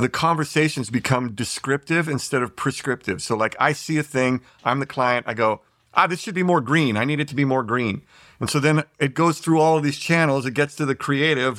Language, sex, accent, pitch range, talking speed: English, male, American, 115-150 Hz, 240 wpm